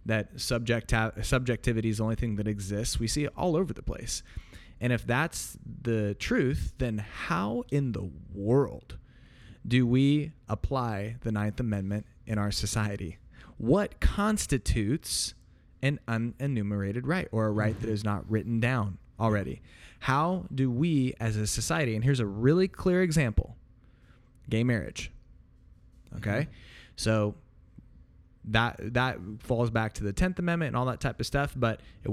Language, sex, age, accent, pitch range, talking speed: English, male, 20-39, American, 105-130 Hz, 150 wpm